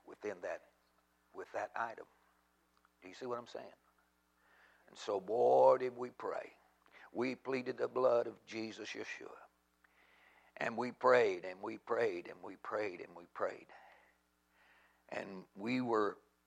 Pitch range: 115-185 Hz